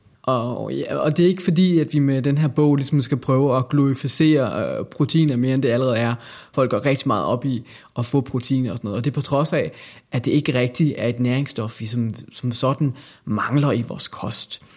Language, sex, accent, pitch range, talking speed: Danish, male, native, 120-145 Hz, 235 wpm